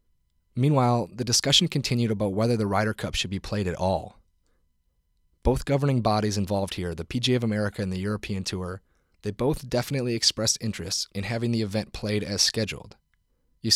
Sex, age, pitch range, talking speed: male, 30-49, 95-120 Hz, 175 wpm